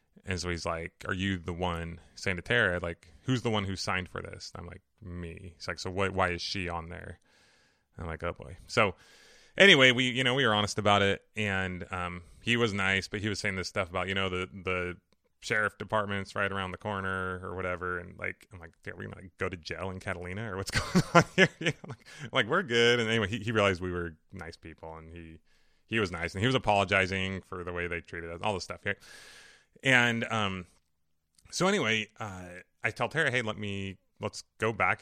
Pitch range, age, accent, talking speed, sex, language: 90-105 Hz, 20-39, American, 235 wpm, male, English